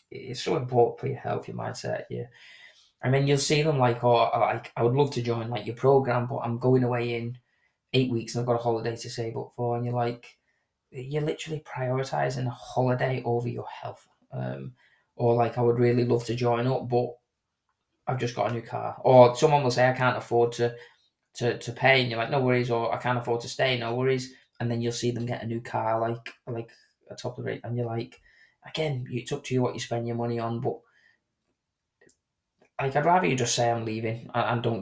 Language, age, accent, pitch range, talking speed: English, 20-39, British, 115-125 Hz, 235 wpm